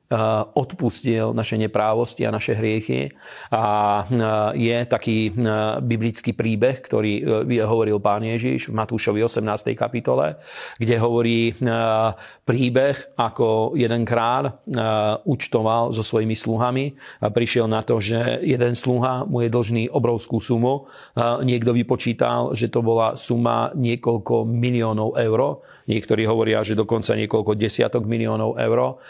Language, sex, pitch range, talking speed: Slovak, male, 110-120 Hz, 120 wpm